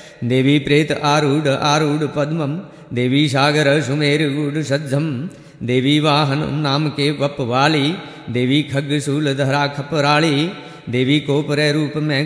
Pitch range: 140-150 Hz